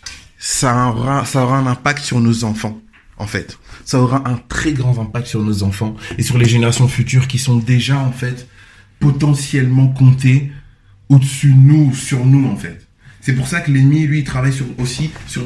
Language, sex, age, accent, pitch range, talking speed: French, male, 20-39, French, 120-140 Hz, 195 wpm